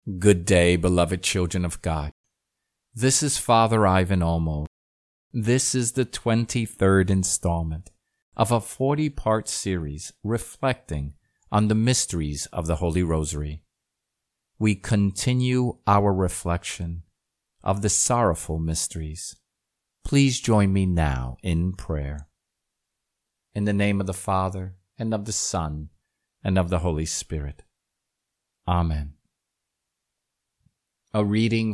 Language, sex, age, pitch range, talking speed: English, male, 50-69, 80-110 Hz, 115 wpm